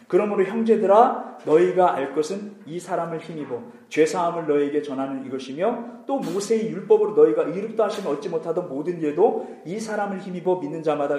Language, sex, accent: Korean, male, native